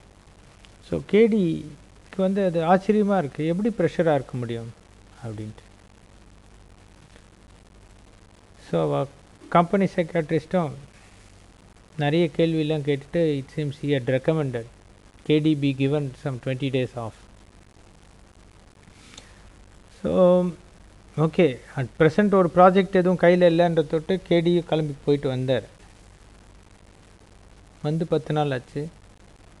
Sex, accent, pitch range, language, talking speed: male, native, 100-155 Hz, Tamil, 95 wpm